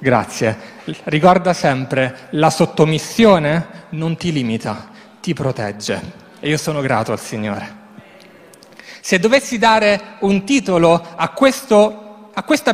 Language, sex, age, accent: Italian, male, 30-49, native